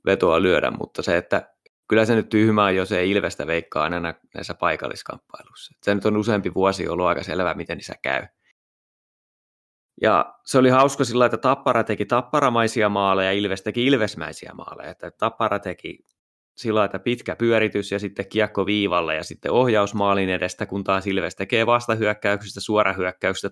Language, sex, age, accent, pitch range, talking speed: Finnish, male, 20-39, native, 95-110 Hz, 155 wpm